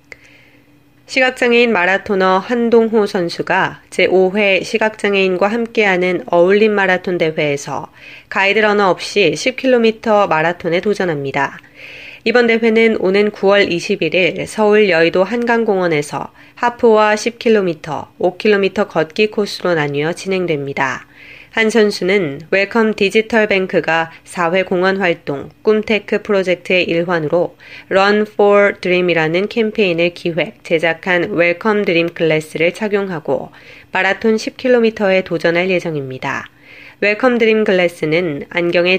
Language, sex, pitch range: Korean, female, 170-210 Hz